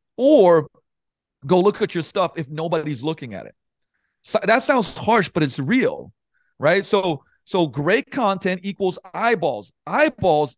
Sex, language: male, English